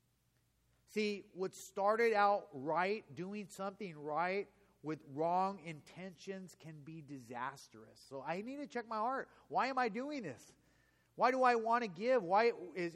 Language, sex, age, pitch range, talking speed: English, male, 30-49, 165-225 Hz, 155 wpm